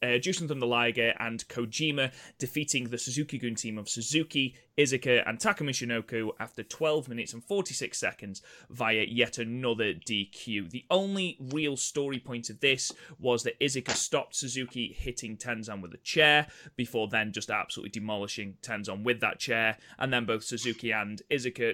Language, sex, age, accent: English, male, 20-39, British